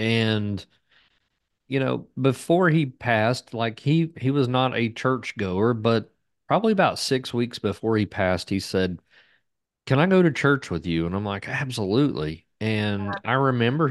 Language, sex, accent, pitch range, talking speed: English, male, American, 95-120 Hz, 165 wpm